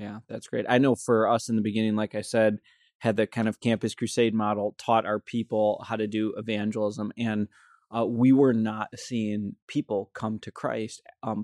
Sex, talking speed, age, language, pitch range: male, 200 wpm, 20-39, English, 110-120 Hz